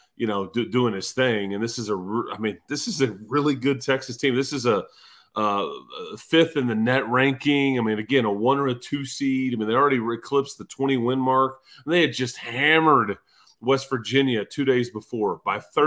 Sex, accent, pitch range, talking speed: male, American, 115-140 Hz, 215 wpm